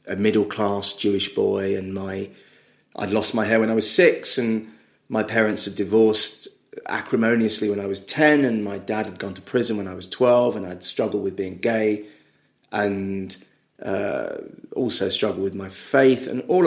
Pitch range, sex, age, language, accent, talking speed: 100-115 Hz, male, 30-49, English, British, 180 wpm